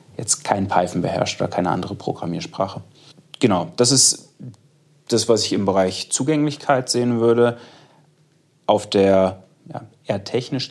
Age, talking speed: 30-49, 130 wpm